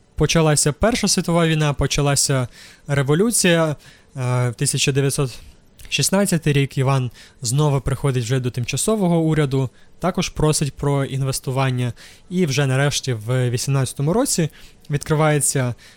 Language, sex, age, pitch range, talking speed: Ukrainian, male, 20-39, 125-150 Hz, 100 wpm